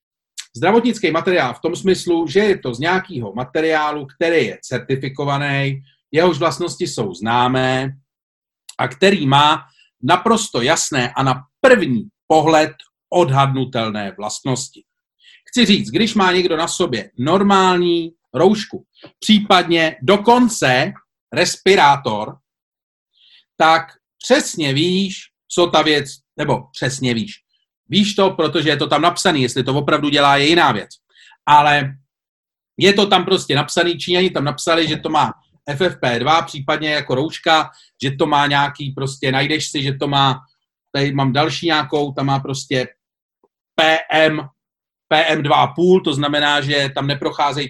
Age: 40-59